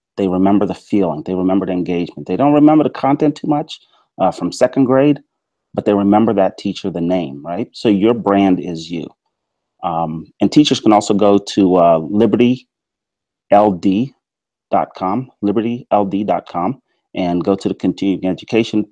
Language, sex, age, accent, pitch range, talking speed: English, male, 30-49, American, 90-120 Hz, 150 wpm